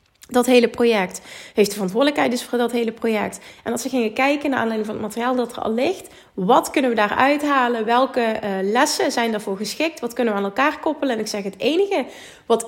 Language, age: Dutch, 30-49